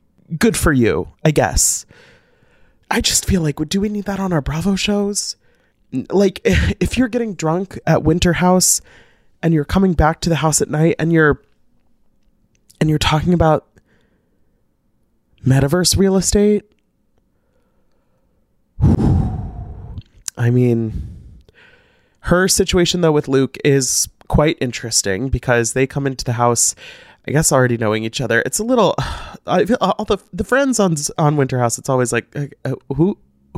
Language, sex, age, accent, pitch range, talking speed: English, male, 20-39, American, 125-195 Hz, 145 wpm